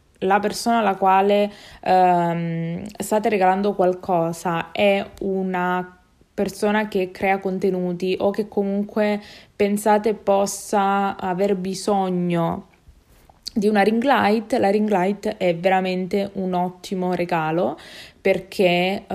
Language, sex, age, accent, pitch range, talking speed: Italian, female, 20-39, native, 180-200 Hz, 105 wpm